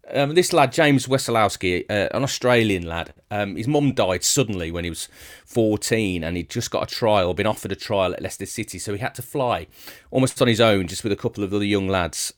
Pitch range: 90-125 Hz